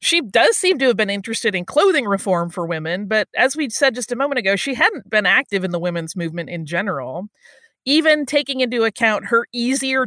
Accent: American